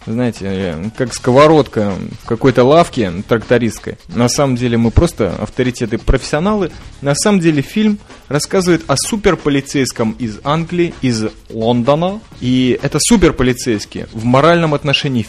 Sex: male